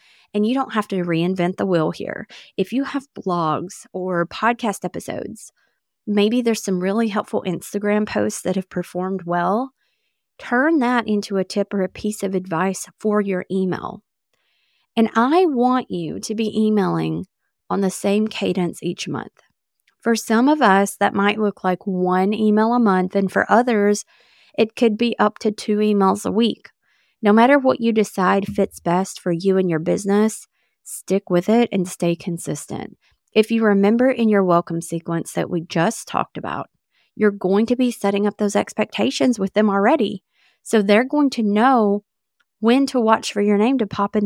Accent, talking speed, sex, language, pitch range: American, 180 wpm, female, English, 185-230 Hz